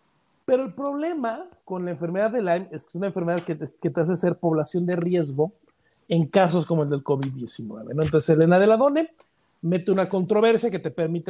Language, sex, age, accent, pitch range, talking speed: Spanish, male, 50-69, Mexican, 165-210 Hz, 210 wpm